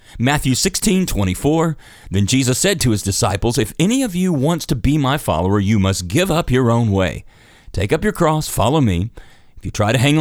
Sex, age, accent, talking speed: male, 40-59, American, 215 wpm